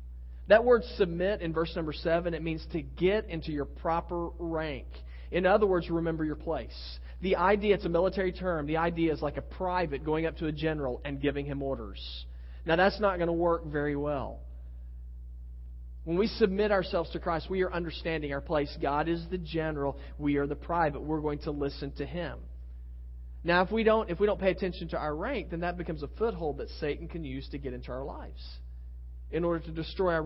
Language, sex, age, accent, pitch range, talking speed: English, male, 40-59, American, 135-185 Hz, 210 wpm